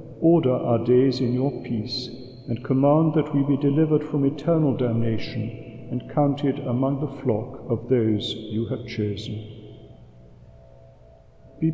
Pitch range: 115-145 Hz